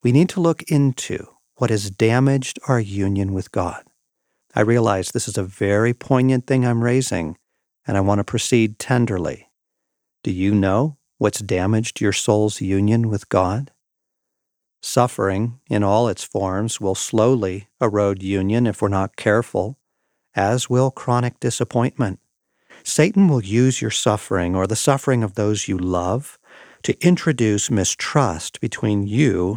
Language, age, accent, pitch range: English, 50-69, American, 100-130 Hz